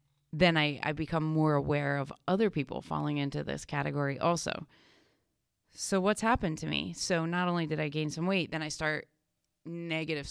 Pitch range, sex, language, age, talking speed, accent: 155-185 Hz, female, English, 30-49, 180 wpm, American